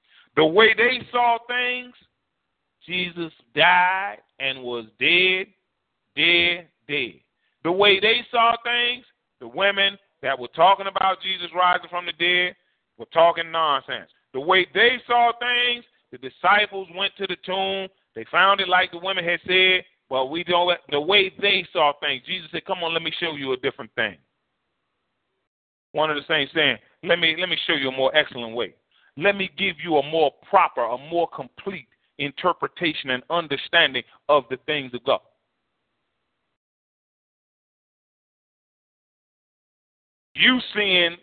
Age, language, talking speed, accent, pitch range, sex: 40-59, English, 150 wpm, American, 145-195 Hz, male